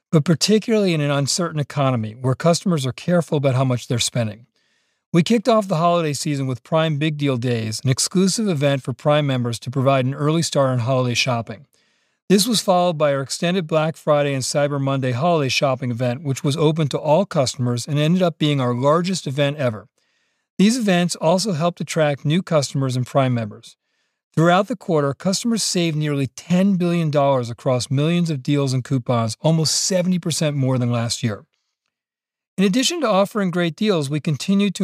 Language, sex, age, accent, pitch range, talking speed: English, male, 50-69, American, 135-175 Hz, 185 wpm